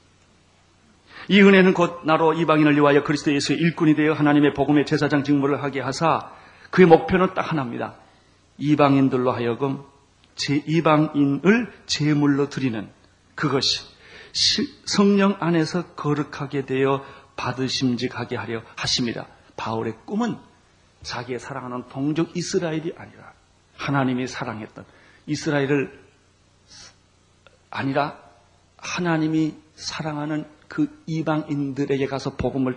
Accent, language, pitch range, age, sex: native, Korean, 110-170 Hz, 40-59, male